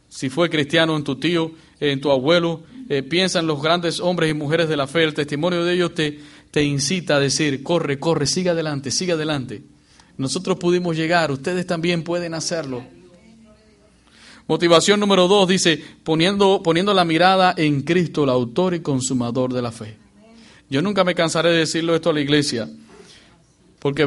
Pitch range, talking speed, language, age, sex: 140-170 Hz, 175 wpm, English, 40-59, male